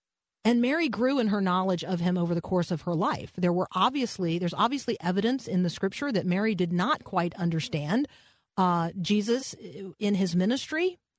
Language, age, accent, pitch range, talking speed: English, 40-59, American, 170-220 Hz, 180 wpm